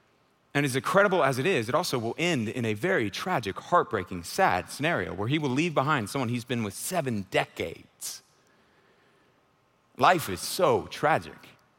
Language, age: English, 30-49